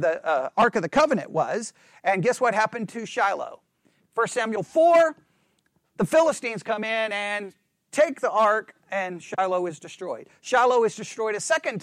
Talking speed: 165 wpm